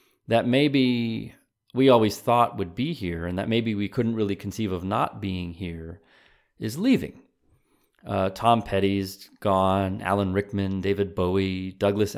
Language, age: English, 30-49